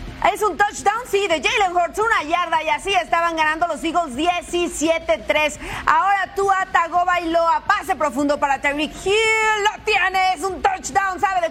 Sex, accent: female, Mexican